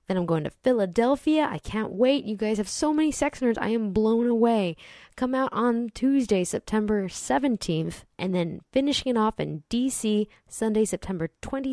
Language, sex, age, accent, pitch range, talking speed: English, female, 20-39, American, 185-250 Hz, 175 wpm